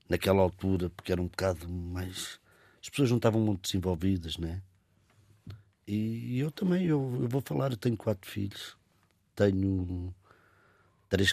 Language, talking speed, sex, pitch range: Portuguese, 145 wpm, male, 95-125 Hz